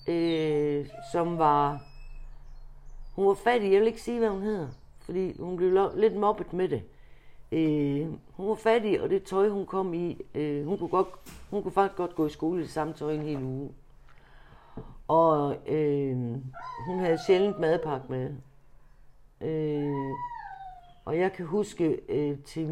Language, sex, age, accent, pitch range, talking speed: Danish, female, 60-79, native, 140-190 Hz, 160 wpm